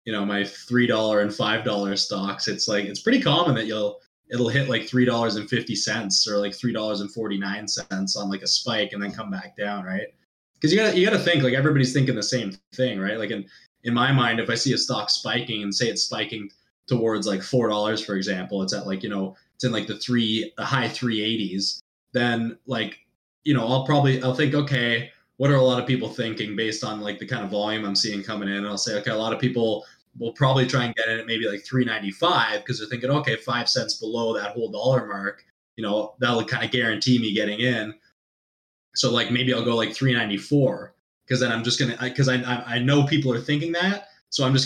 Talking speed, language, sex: 240 wpm, English, male